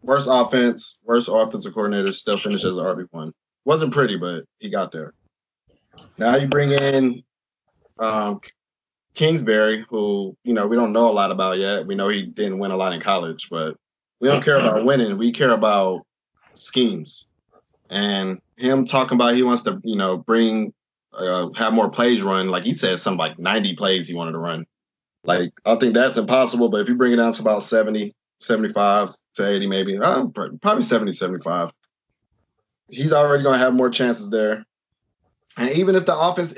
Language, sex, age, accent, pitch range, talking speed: English, male, 20-39, American, 95-125 Hz, 180 wpm